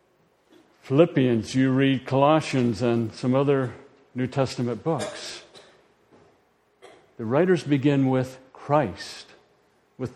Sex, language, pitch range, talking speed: male, English, 115-140 Hz, 95 wpm